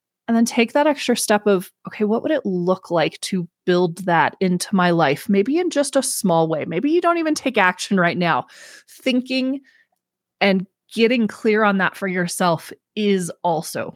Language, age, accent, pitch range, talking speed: English, 20-39, American, 175-255 Hz, 185 wpm